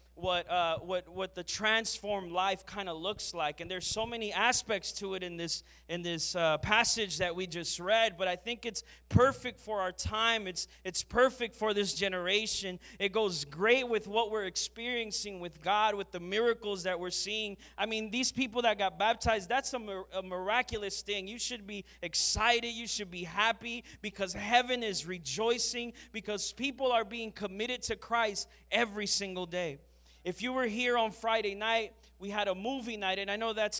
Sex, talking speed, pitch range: male, 190 wpm, 190-235 Hz